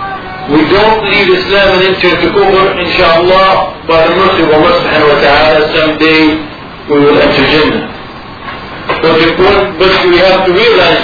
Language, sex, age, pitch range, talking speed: English, male, 50-69, 165-195 Hz, 165 wpm